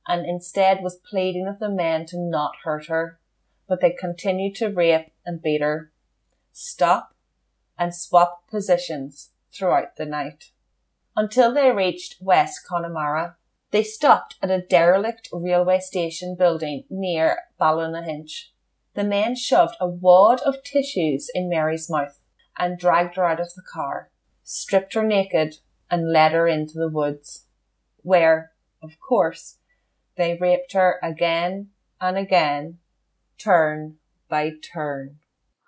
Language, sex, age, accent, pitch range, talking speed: English, female, 30-49, Irish, 160-215 Hz, 135 wpm